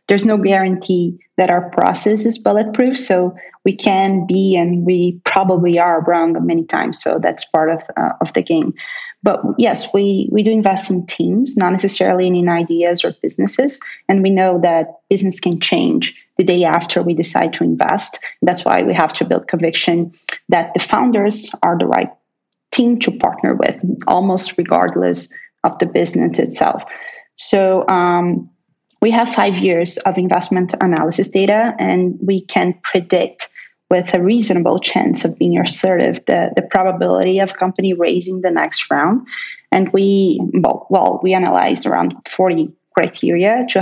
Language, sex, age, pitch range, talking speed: English, female, 20-39, 175-205 Hz, 160 wpm